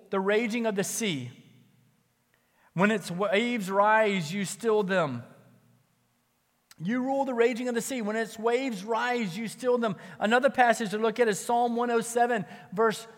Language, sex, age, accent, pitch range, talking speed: English, male, 30-49, American, 145-220 Hz, 160 wpm